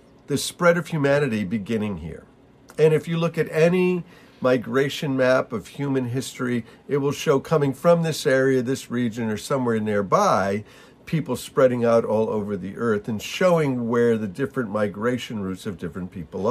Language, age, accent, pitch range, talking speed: English, 50-69, American, 105-155 Hz, 165 wpm